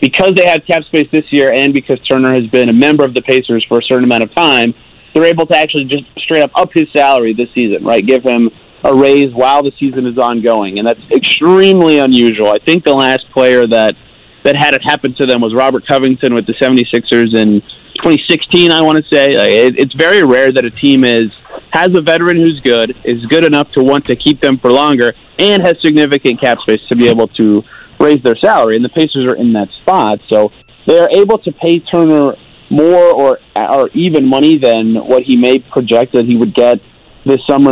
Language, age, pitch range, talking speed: English, 30-49, 120-150 Hz, 215 wpm